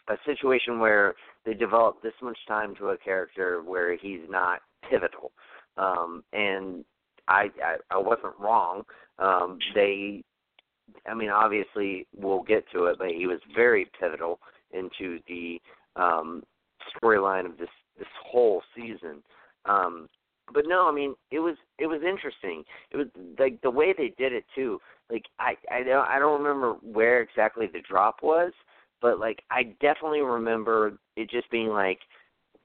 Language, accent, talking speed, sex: English, American, 155 wpm, male